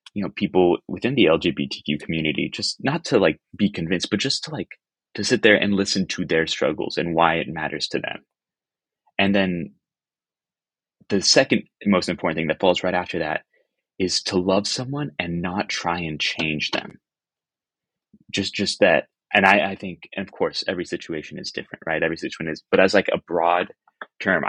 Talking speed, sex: 190 wpm, male